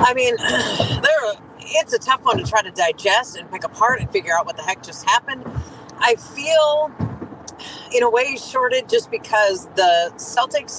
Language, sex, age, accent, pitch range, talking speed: English, female, 40-59, American, 210-345 Hz, 170 wpm